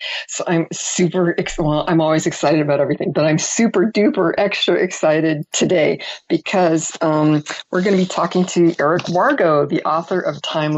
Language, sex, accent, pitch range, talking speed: English, female, American, 155-190 Hz, 195 wpm